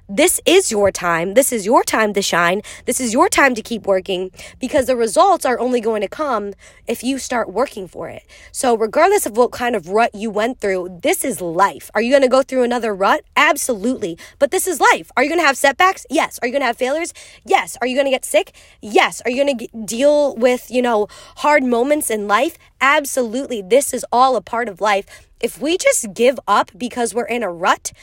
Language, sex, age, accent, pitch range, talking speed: English, female, 20-39, American, 210-270 Hz, 230 wpm